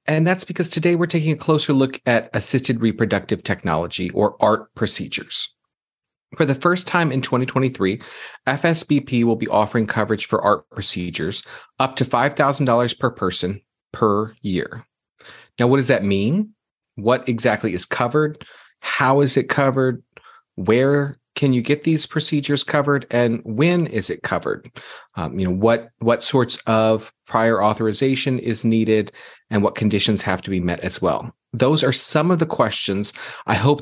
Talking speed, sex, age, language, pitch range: 160 wpm, male, 40-59, English, 115-145 Hz